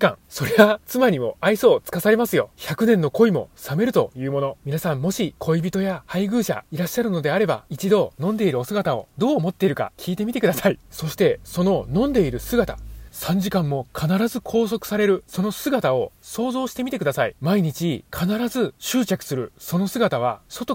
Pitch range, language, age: 170-230 Hz, Japanese, 20-39